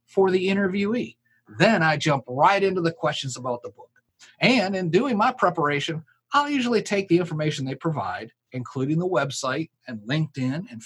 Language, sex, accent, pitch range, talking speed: English, male, American, 130-185 Hz, 170 wpm